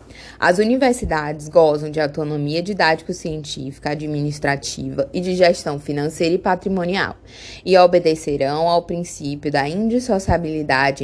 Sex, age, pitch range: female, 20-39, 145-190 Hz